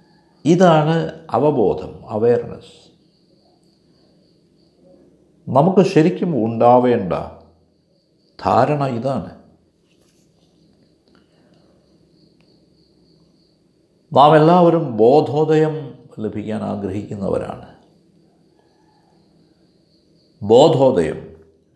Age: 50-69